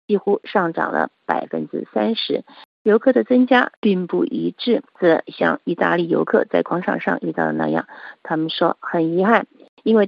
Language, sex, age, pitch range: Chinese, female, 50-69, 170-215 Hz